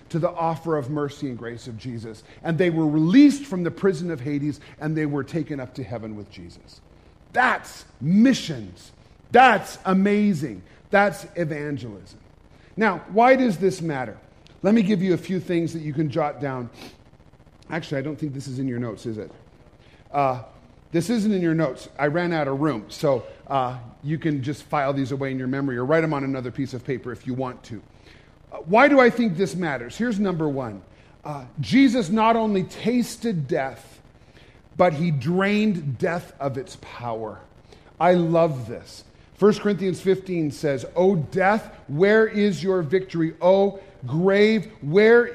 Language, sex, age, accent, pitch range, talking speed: English, male, 40-59, American, 135-200 Hz, 175 wpm